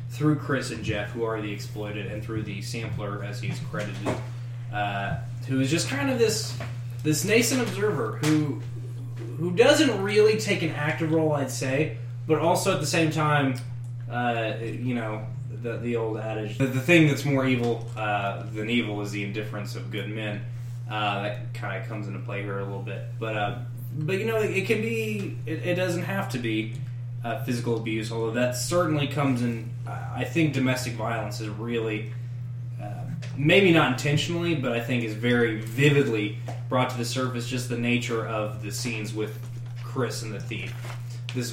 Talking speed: 185 wpm